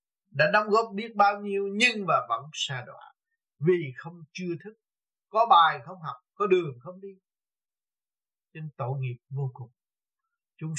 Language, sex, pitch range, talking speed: Vietnamese, male, 135-180 Hz, 160 wpm